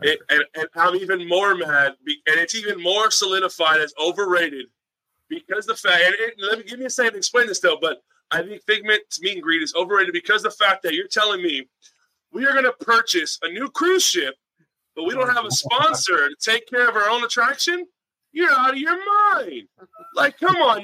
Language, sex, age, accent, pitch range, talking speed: English, male, 30-49, American, 180-285 Hz, 220 wpm